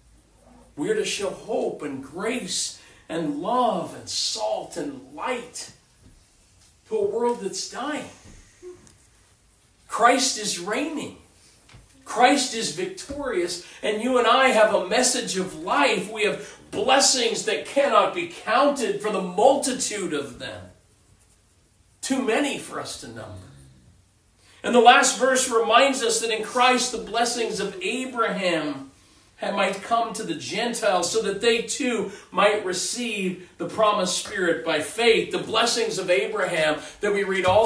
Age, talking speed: 50-69, 140 wpm